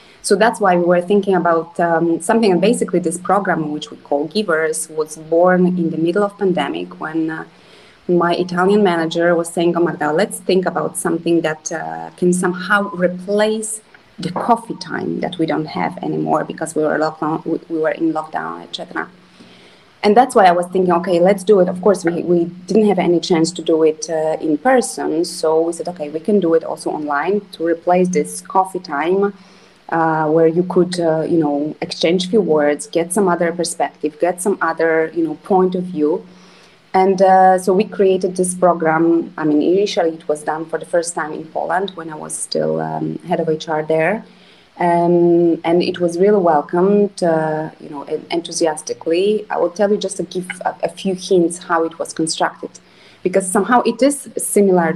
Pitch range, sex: 160-190 Hz, female